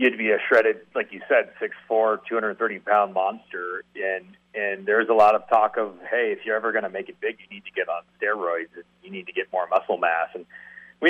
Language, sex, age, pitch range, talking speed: English, male, 40-59, 105-155 Hz, 260 wpm